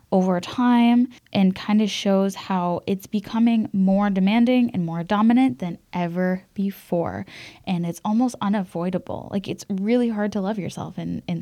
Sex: female